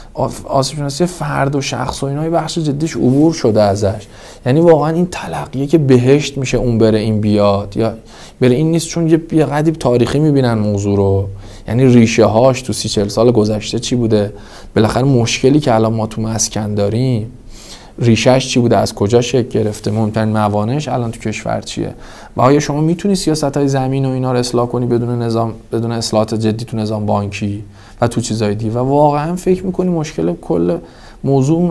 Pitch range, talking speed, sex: 110-145 Hz, 175 wpm, male